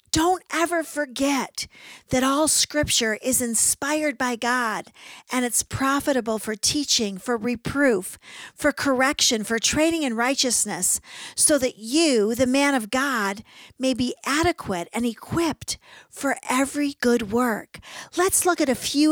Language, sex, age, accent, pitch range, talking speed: English, female, 50-69, American, 225-285 Hz, 140 wpm